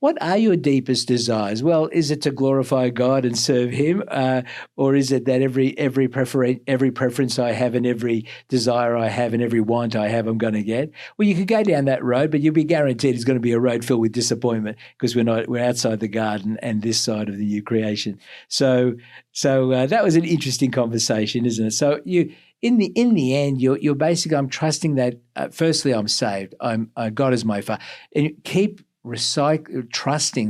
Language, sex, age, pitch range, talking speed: English, male, 50-69, 110-140 Hz, 220 wpm